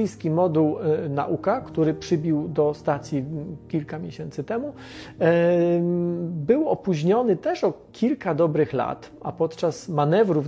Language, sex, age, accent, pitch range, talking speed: Polish, male, 40-59, native, 155-205 Hz, 110 wpm